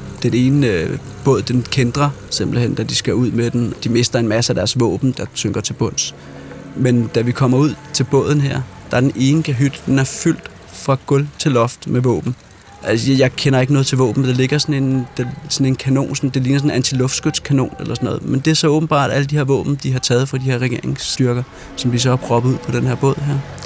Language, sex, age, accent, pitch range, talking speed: Danish, male, 30-49, native, 100-135 Hz, 245 wpm